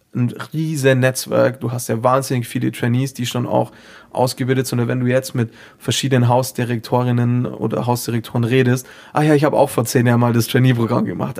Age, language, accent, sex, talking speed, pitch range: 30-49, German, German, male, 190 wpm, 110-130 Hz